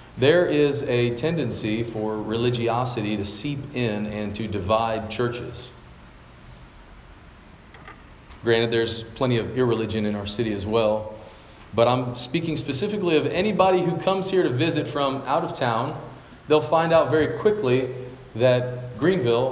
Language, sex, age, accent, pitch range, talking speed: English, male, 40-59, American, 110-140 Hz, 140 wpm